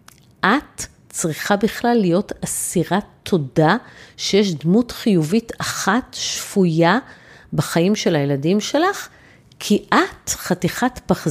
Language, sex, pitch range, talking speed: Hebrew, female, 160-215 Hz, 100 wpm